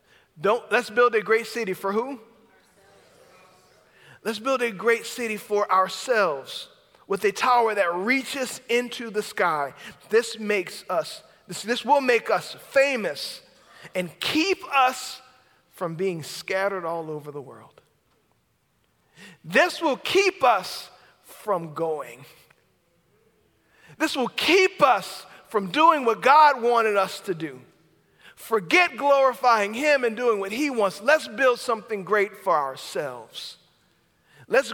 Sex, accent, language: male, American, English